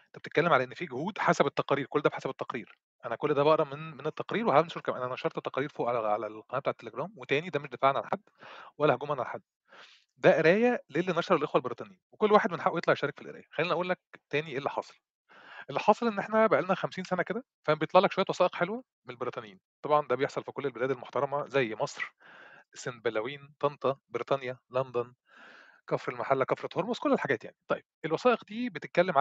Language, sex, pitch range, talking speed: Arabic, male, 140-190 Hz, 205 wpm